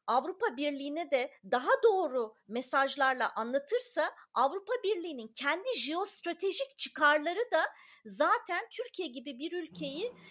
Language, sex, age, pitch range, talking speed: Turkish, female, 40-59, 275-370 Hz, 105 wpm